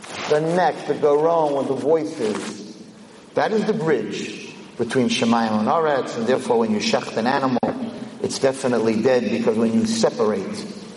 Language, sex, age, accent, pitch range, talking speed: English, male, 50-69, American, 150-225 Hz, 160 wpm